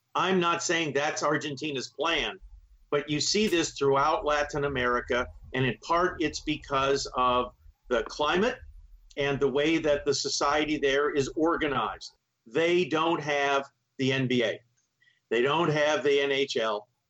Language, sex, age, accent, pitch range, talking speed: English, male, 50-69, American, 125-165 Hz, 140 wpm